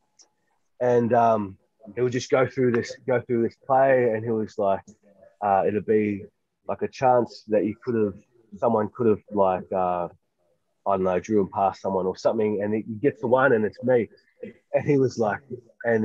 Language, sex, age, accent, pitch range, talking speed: English, male, 20-39, Australian, 110-145 Hz, 200 wpm